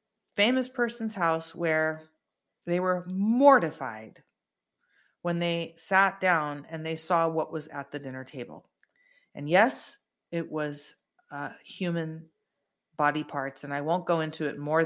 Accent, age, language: American, 30-49, English